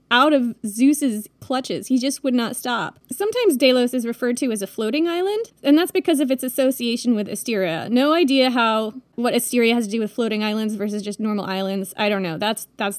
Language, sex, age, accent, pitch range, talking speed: English, female, 20-39, American, 220-295 Hz, 215 wpm